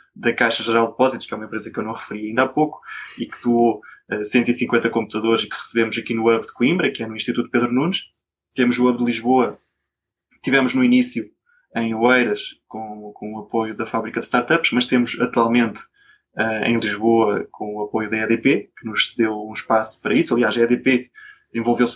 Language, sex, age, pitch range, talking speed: Portuguese, male, 20-39, 115-130 Hz, 210 wpm